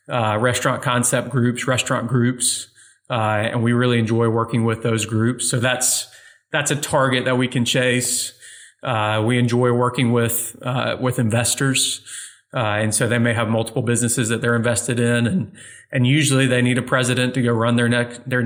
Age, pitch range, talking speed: 30-49, 120-135 Hz, 185 wpm